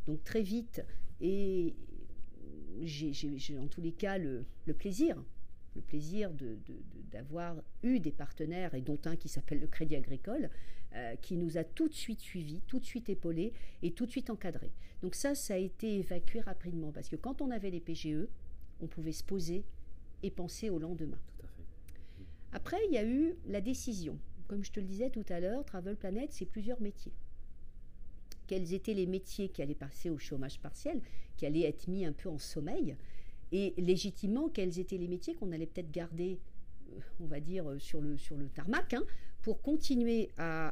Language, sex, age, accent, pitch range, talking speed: French, female, 50-69, French, 150-210 Hz, 185 wpm